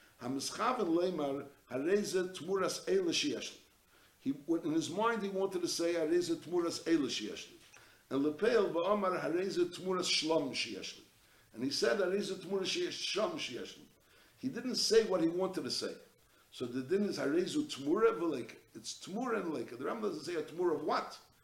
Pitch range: 150-240 Hz